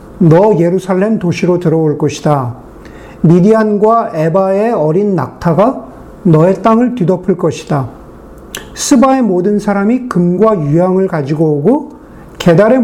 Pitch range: 160-230 Hz